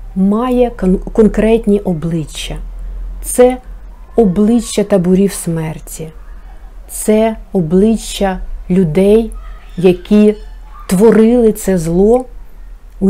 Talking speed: 70 wpm